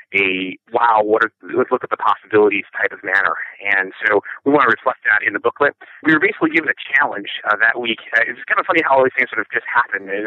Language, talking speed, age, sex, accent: English, 255 wpm, 30-49, male, American